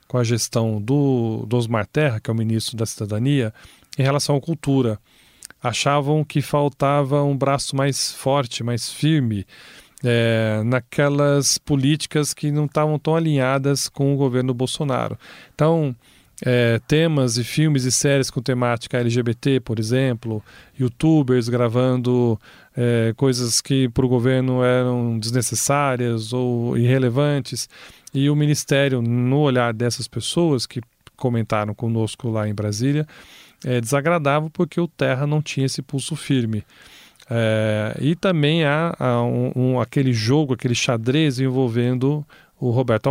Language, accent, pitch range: Portuguese, Brazilian, 120-140 Hz